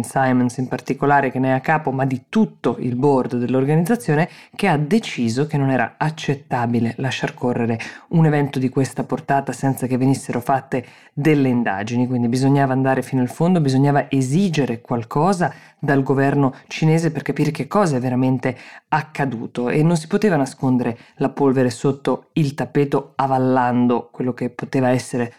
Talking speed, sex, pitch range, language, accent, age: 160 wpm, female, 130-150 Hz, Italian, native, 20-39